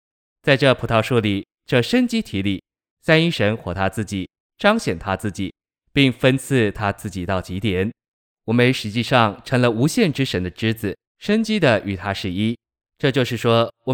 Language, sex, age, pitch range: Chinese, male, 20-39, 100-130 Hz